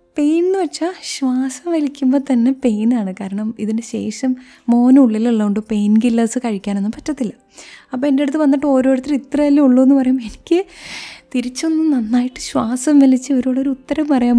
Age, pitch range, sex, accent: 20-39, 210-285 Hz, female, native